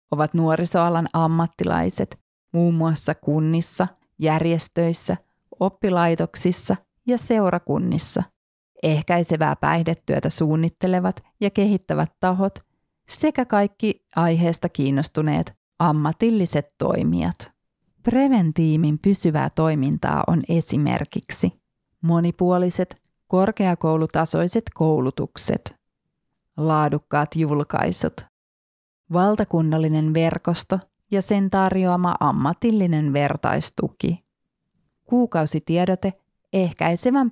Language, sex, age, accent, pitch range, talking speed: Finnish, female, 30-49, native, 155-185 Hz, 65 wpm